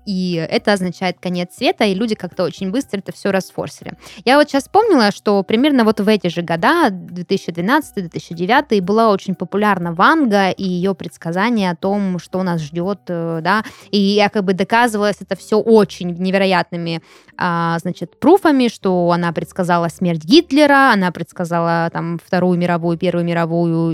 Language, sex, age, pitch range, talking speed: Russian, female, 20-39, 175-225 Hz, 150 wpm